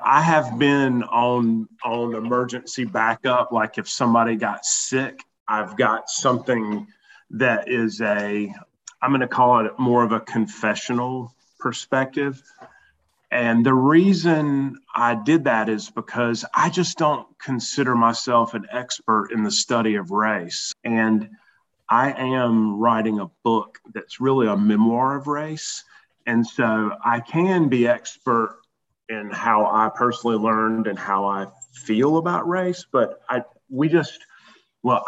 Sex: male